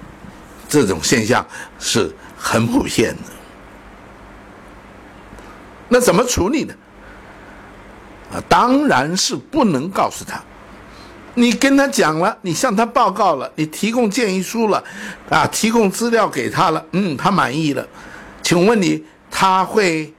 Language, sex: Chinese, male